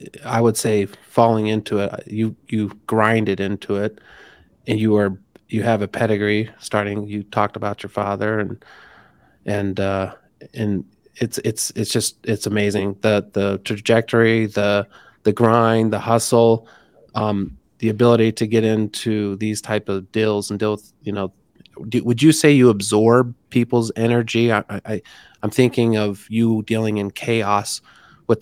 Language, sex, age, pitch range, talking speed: English, male, 30-49, 105-115 Hz, 155 wpm